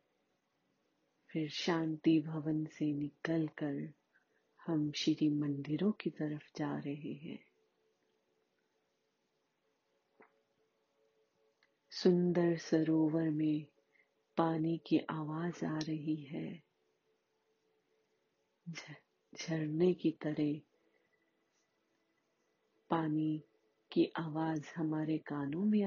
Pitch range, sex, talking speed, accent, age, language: 150-170 Hz, female, 70 wpm, native, 30-49, Hindi